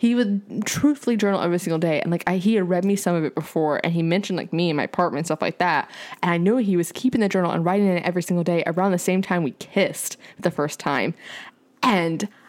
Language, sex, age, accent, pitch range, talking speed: English, female, 10-29, American, 165-200 Hz, 265 wpm